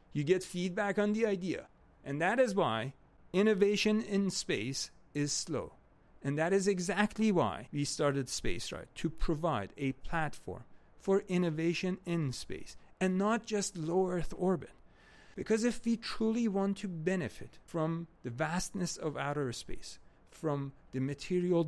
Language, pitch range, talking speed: English, 145-215 Hz, 145 wpm